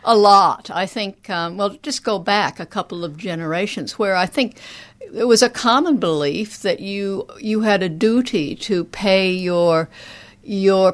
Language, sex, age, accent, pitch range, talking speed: English, female, 60-79, American, 175-230 Hz, 170 wpm